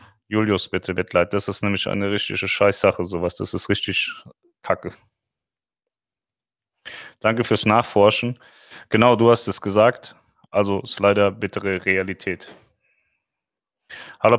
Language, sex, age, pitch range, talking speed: German, male, 30-49, 100-125 Hz, 120 wpm